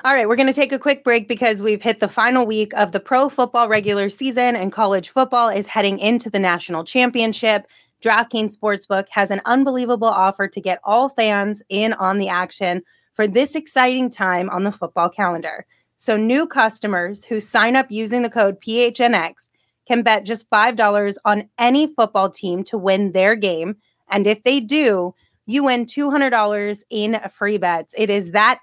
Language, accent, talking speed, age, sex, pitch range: English, American, 180 wpm, 30-49, female, 200-245 Hz